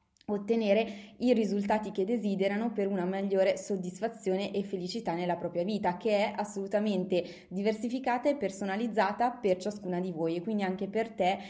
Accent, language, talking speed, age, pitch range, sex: native, Italian, 150 wpm, 20-39, 185-220 Hz, female